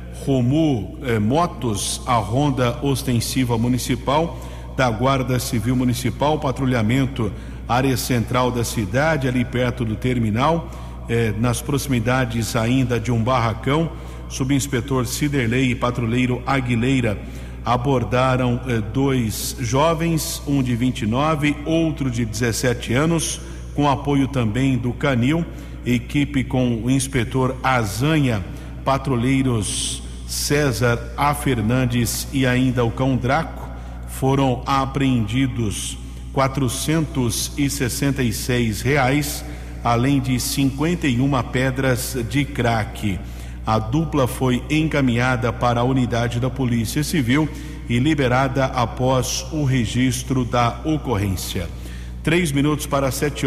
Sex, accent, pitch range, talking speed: male, Brazilian, 120-140 Hz, 105 wpm